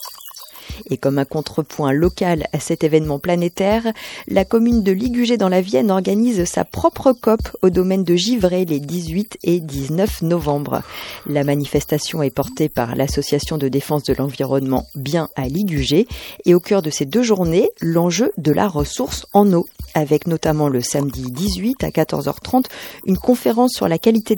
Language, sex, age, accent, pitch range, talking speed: French, female, 40-59, French, 155-225 Hz, 165 wpm